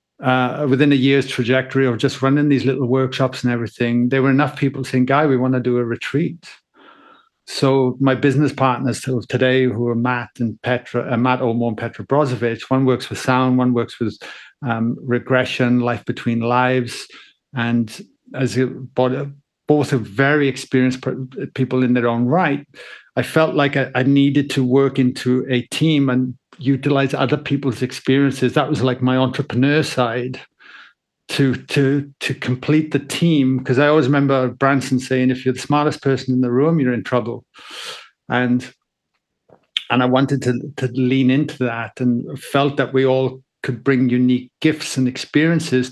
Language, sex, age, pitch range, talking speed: English, male, 50-69, 125-140 Hz, 170 wpm